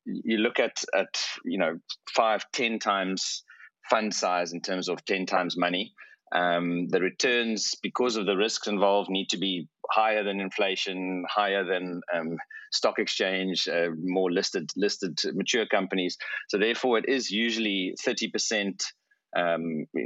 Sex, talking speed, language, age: male, 150 wpm, English, 30-49